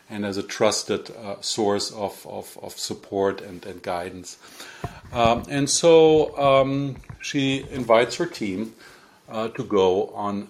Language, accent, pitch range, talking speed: English, German, 100-125 Hz, 145 wpm